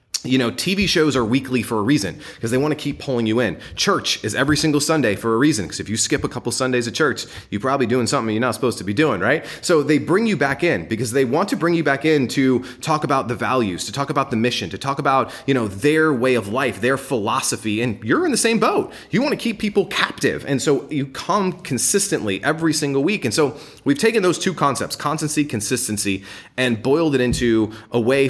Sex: male